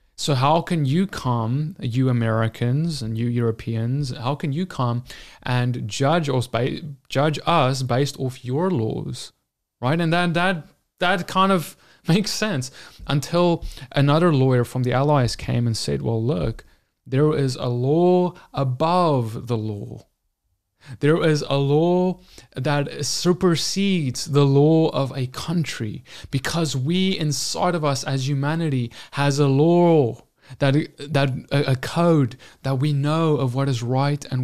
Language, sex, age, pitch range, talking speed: English, male, 20-39, 125-155 Hz, 145 wpm